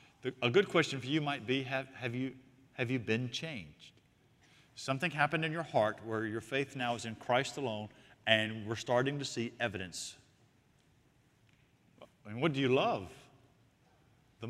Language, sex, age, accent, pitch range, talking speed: English, male, 50-69, American, 105-135 Hz, 165 wpm